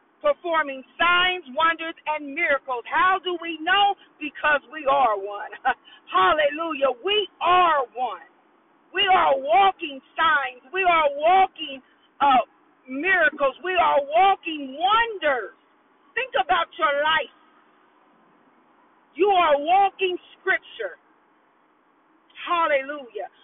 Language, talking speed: English, 100 wpm